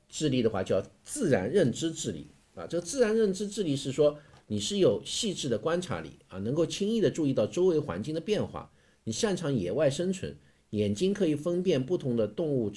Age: 50-69